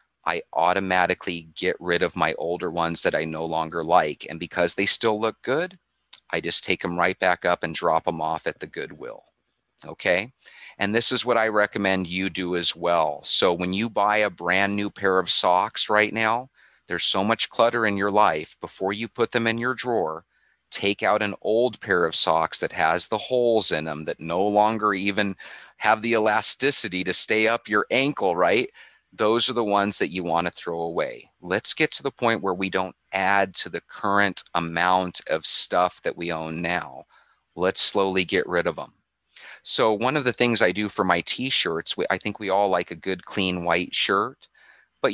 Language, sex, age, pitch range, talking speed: English, male, 30-49, 90-105 Hz, 200 wpm